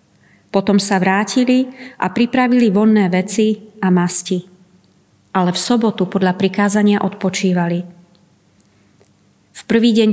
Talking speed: 105 wpm